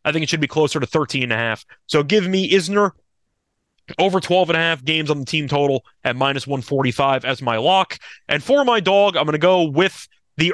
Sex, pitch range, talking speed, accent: male, 140-175 Hz, 235 wpm, American